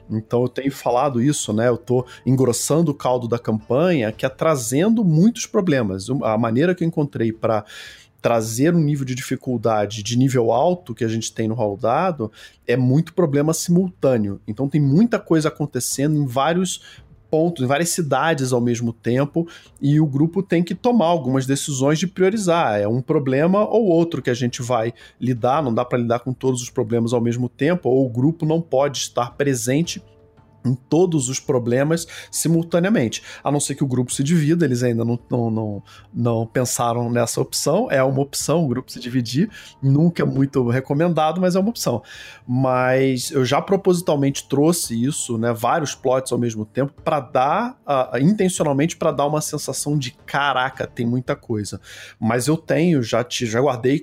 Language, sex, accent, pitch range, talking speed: Portuguese, male, Brazilian, 120-160 Hz, 180 wpm